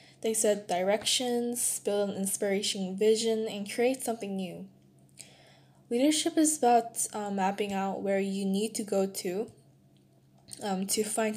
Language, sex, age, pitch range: Korean, female, 10-29, 195-230 Hz